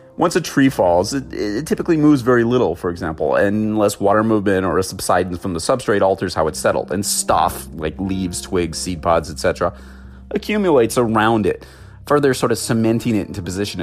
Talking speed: 185 wpm